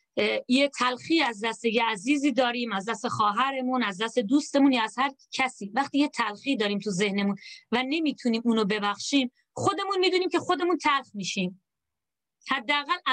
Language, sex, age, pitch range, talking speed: Persian, female, 30-49, 225-295 Hz, 155 wpm